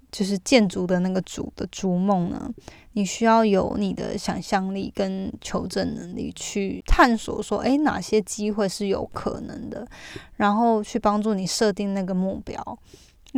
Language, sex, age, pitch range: Chinese, female, 20-39, 195-225 Hz